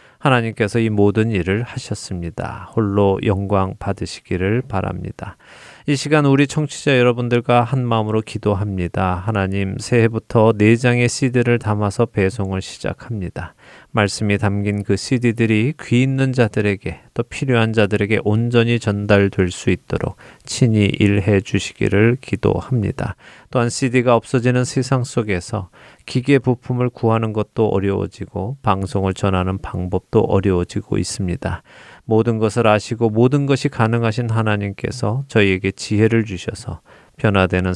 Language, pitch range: Korean, 95-120 Hz